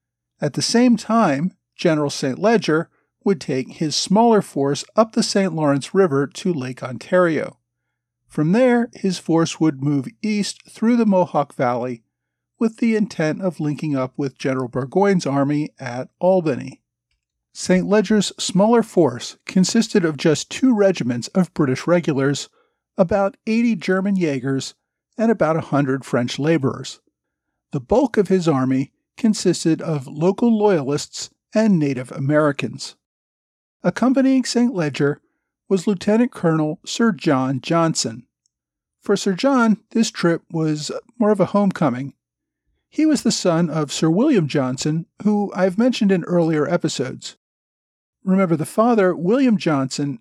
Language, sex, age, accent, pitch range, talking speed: English, male, 50-69, American, 145-210 Hz, 135 wpm